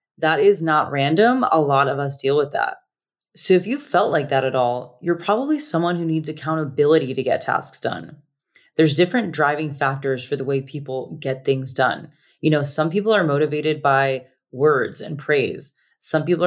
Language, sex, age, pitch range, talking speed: English, female, 20-39, 135-165 Hz, 190 wpm